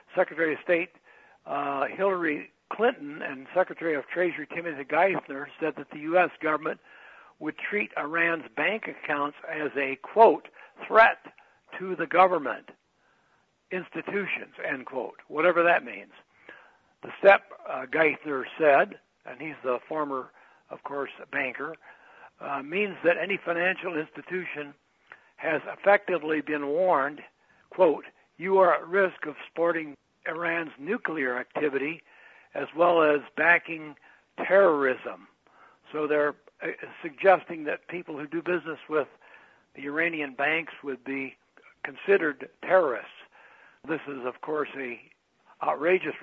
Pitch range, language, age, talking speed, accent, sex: 150-185 Hz, English, 60-79, 120 wpm, American, male